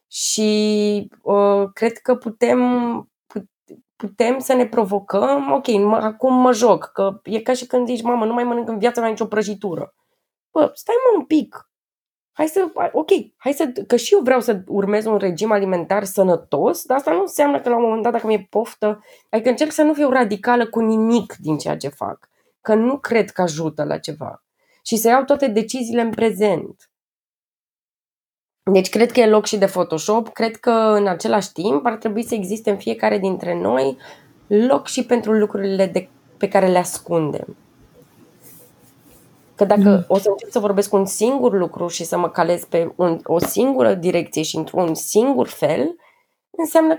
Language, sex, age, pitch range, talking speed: Romanian, female, 20-39, 200-260 Hz, 180 wpm